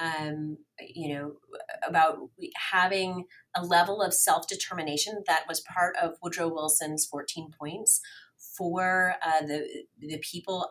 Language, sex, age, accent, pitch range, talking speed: English, female, 30-49, American, 155-190 Hz, 125 wpm